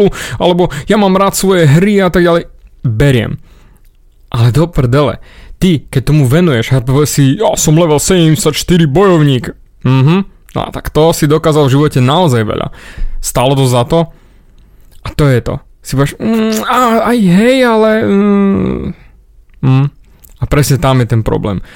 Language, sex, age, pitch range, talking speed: Slovak, male, 20-39, 125-160 Hz, 155 wpm